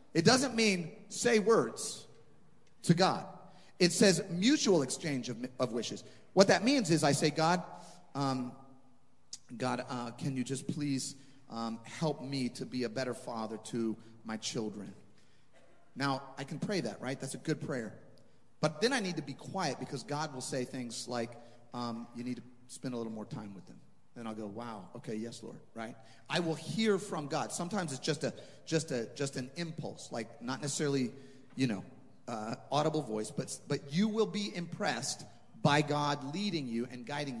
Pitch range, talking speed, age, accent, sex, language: 125-160 Hz, 185 wpm, 30-49, American, male, English